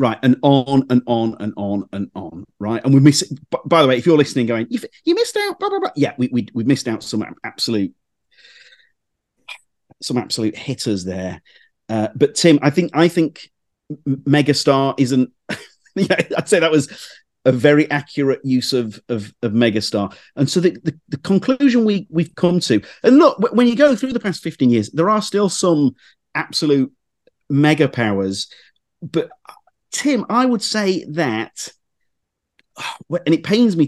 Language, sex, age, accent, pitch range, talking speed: English, male, 40-59, British, 110-160 Hz, 175 wpm